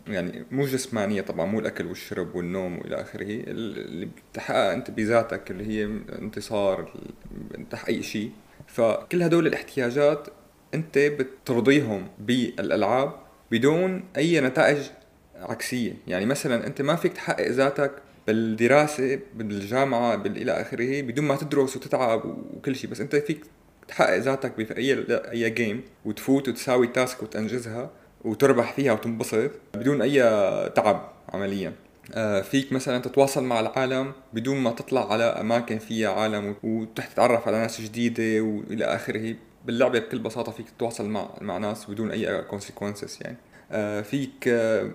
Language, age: Arabic, 30-49